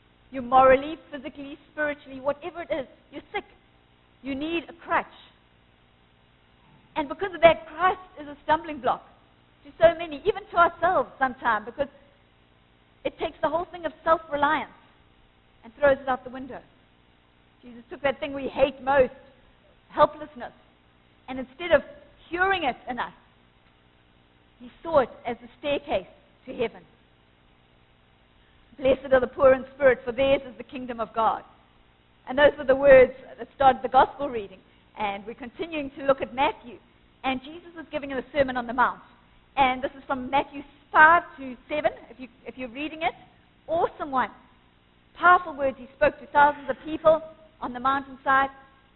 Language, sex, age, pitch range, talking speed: English, female, 50-69, 240-315 Hz, 165 wpm